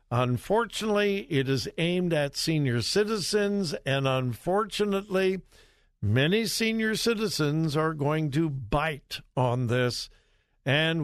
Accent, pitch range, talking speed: American, 120-155 Hz, 105 wpm